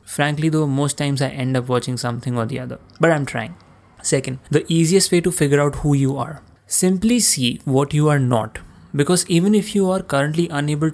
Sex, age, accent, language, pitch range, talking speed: male, 20-39, native, Hindi, 125-160 Hz, 210 wpm